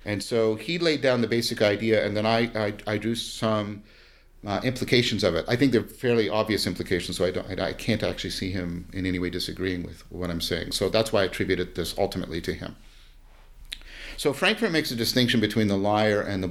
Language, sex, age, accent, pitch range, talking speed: English, male, 50-69, American, 95-125 Hz, 220 wpm